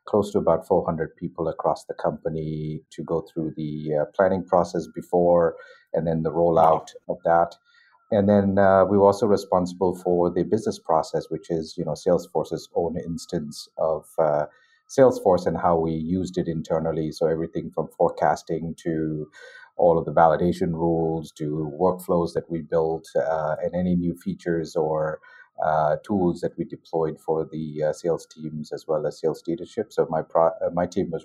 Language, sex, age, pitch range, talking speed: English, male, 50-69, 80-95 Hz, 175 wpm